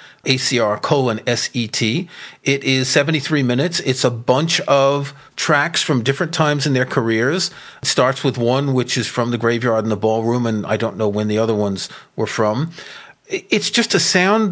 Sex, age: male, 40-59